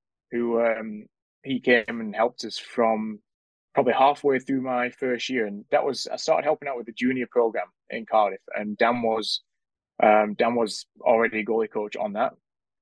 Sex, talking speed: male, 185 wpm